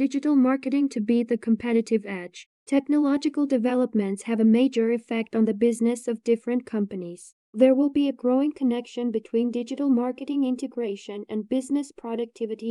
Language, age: English, 10-29